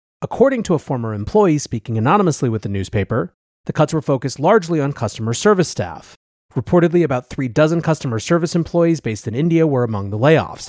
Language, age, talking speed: English, 30-49, 185 wpm